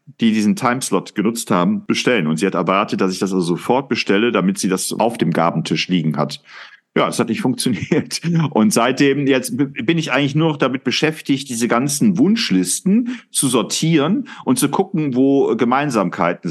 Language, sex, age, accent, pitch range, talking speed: German, male, 40-59, German, 95-140 Hz, 180 wpm